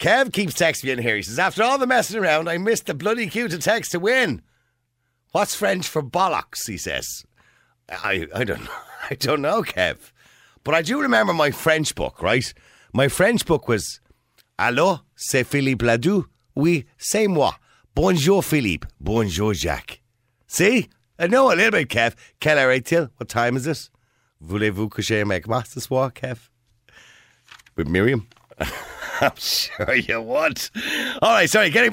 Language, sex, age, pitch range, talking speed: English, male, 50-69, 95-155 Hz, 160 wpm